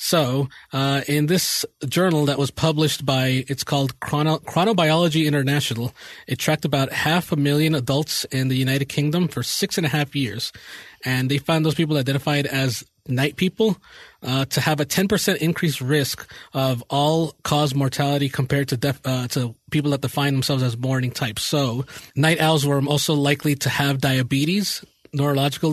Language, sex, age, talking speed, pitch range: English, male, 30-49, 175 wpm, 135-160 Hz